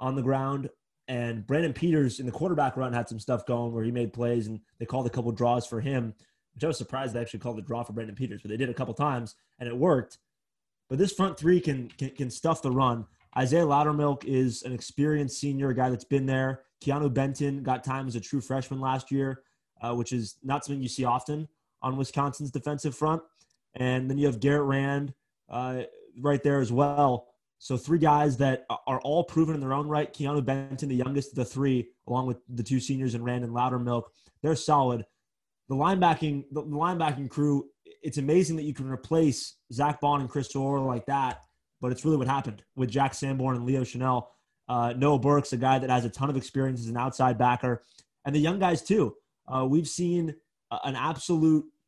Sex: male